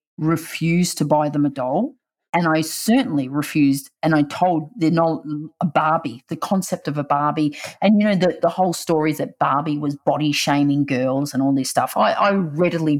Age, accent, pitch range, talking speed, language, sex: 30-49, Australian, 145-185 Hz, 210 wpm, English, female